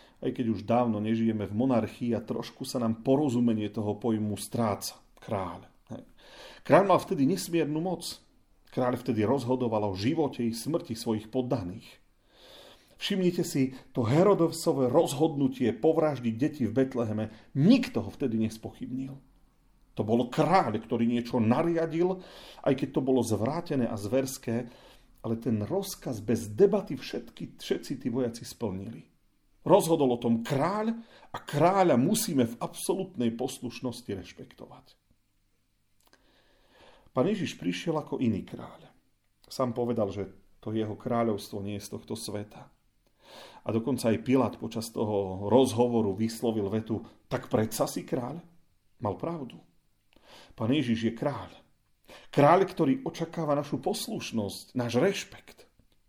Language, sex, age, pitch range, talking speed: Slovak, male, 40-59, 110-145 Hz, 130 wpm